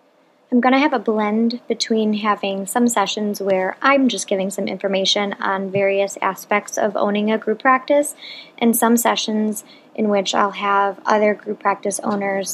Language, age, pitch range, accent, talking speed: English, 20-39, 195-220 Hz, American, 165 wpm